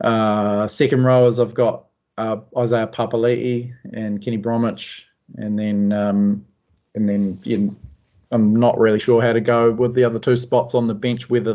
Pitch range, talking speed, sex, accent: 105-115 Hz, 175 wpm, male, Australian